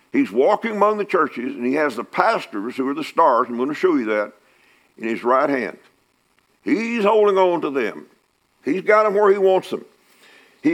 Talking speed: 205 wpm